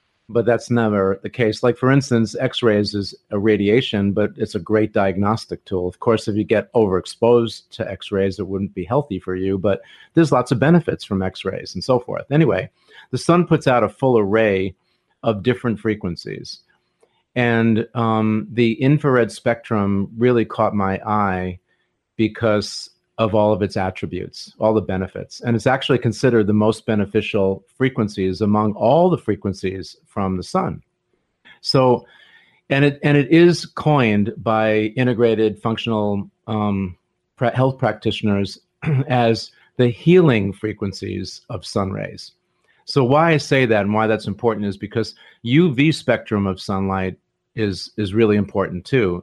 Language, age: English, 40-59